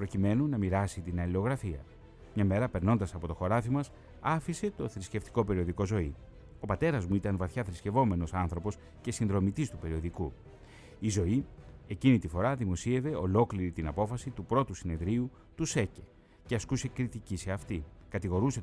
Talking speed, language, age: 155 wpm, Greek, 30-49